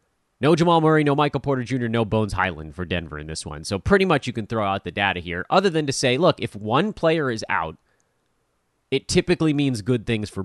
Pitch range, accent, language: 105-155 Hz, American, English